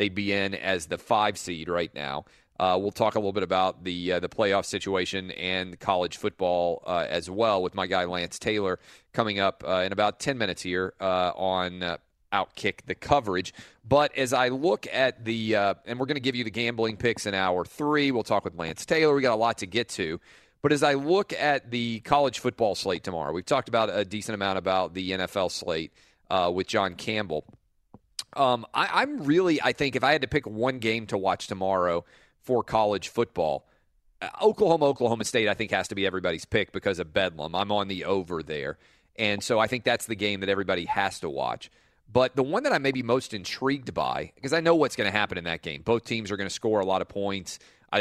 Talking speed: 225 wpm